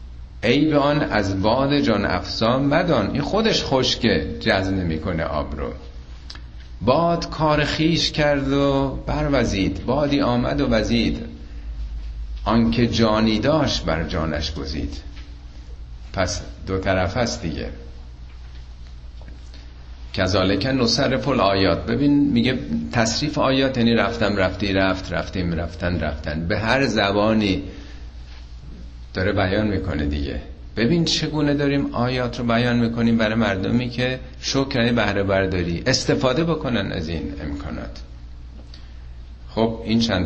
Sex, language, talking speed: male, Persian, 120 wpm